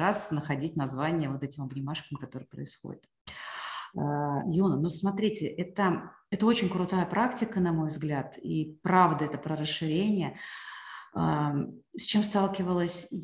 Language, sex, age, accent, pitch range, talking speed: Russian, female, 30-49, native, 160-195 Hz, 120 wpm